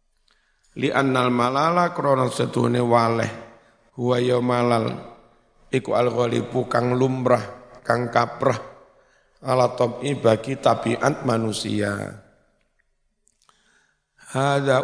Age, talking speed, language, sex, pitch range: 50-69, 80 wpm, Indonesian, male, 120-125 Hz